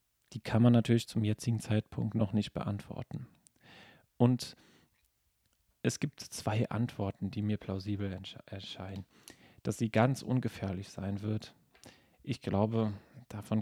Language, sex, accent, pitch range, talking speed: German, male, German, 105-115 Hz, 125 wpm